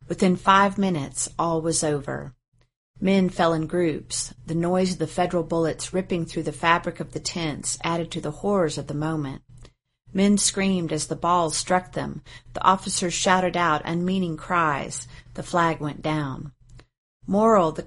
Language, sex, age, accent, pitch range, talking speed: English, female, 40-59, American, 145-180 Hz, 165 wpm